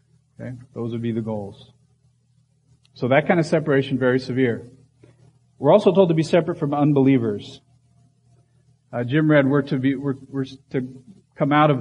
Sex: male